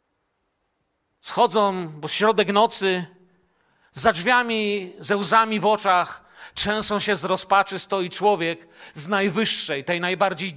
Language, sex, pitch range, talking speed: Polish, male, 170-220 Hz, 115 wpm